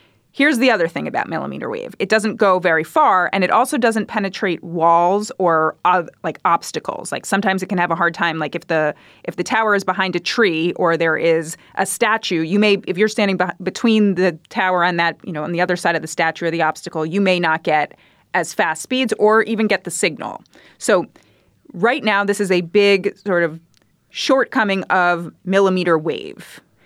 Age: 30-49